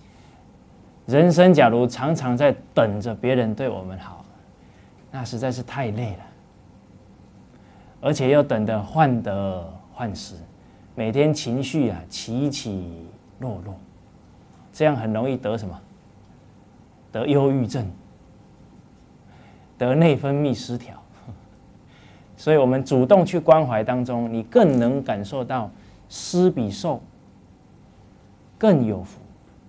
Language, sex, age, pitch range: English, male, 20-39, 100-145 Hz